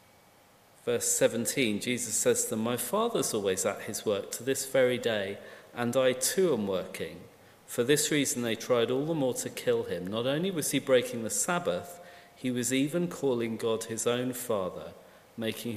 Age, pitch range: 40-59, 115-175 Hz